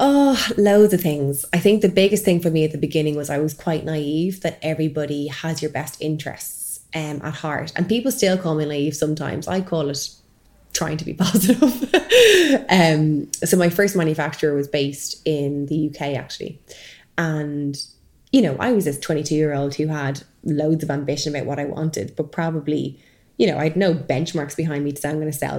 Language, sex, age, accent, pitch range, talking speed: English, female, 20-39, Irish, 145-170 Hz, 205 wpm